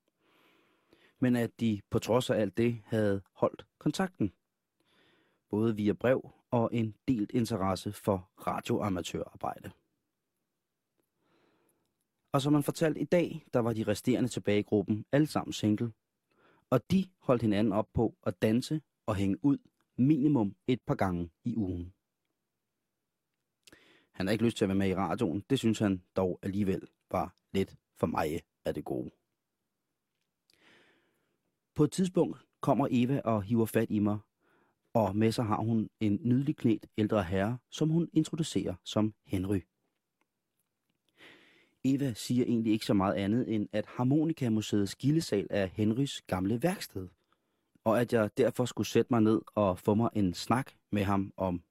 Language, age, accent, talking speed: Danish, 30-49, native, 145 wpm